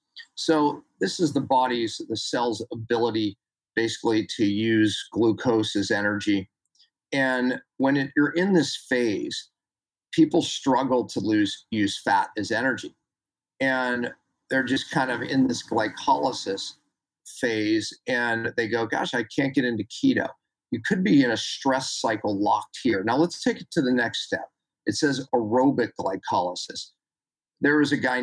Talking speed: 155 wpm